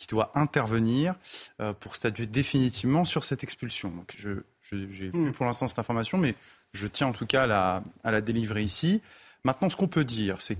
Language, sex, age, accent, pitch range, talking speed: French, male, 30-49, French, 110-160 Hz, 200 wpm